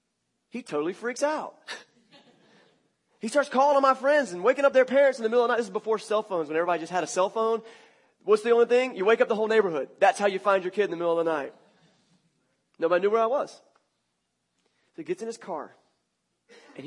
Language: English